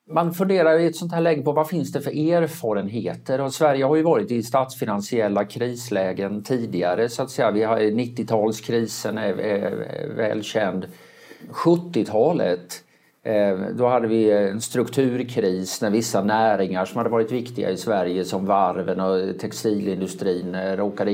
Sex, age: male, 50-69